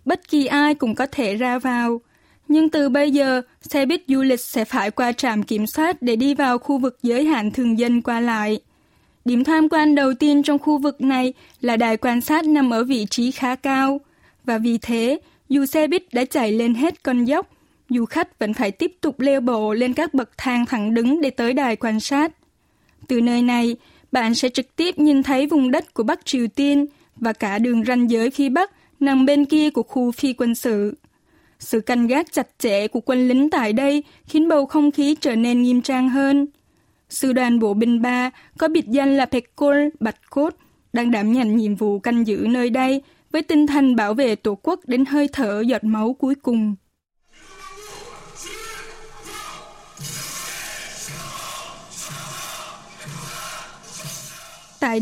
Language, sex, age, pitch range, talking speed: Vietnamese, female, 10-29, 240-290 Hz, 185 wpm